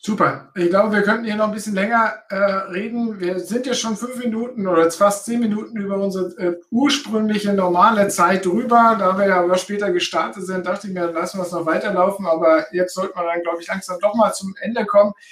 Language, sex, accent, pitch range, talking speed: German, male, German, 175-210 Hz, 220 wpm